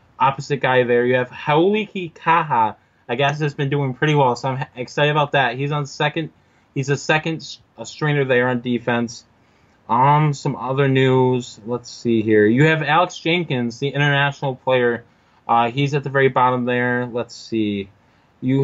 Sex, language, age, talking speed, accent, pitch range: male, English, 20-39, 175 wpm, American, 125-150 Hz